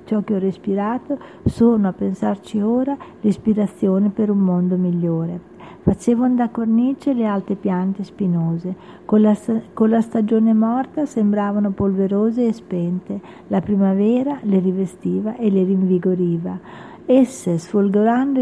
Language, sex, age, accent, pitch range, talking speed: Italian, female, 50-69, native, 185-230 Hz, 125 wpm